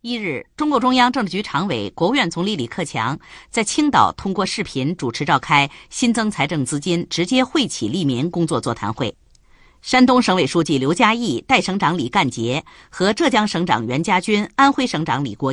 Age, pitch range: 50-69, 140-235 Hz